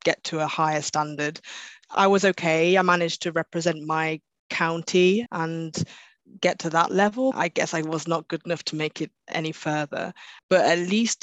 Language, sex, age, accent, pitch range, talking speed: English, female, 20-39, British, 155-175 Hz, 180 wpm